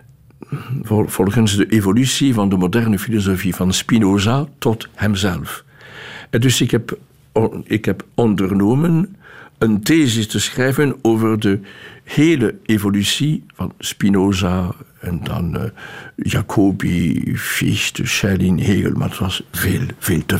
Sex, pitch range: male, 105-130 Hz